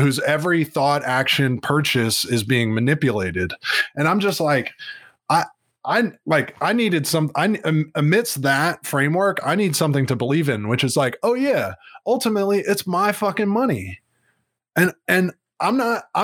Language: English